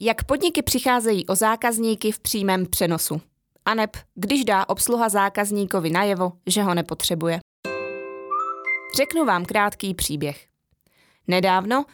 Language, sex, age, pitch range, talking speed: Czech, female, 20-39, 175-235 Hz, 115 wpm